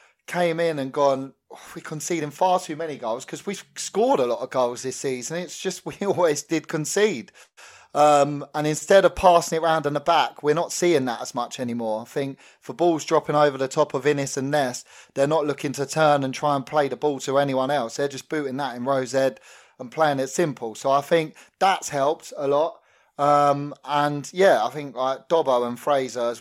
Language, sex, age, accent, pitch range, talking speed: English, male, 20-39, British, 130-150 Hz, 215 wpm